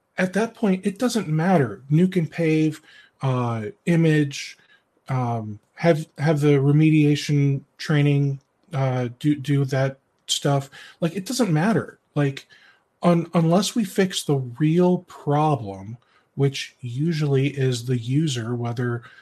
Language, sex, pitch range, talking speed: English, male, 125-155 Hz, 125 wpm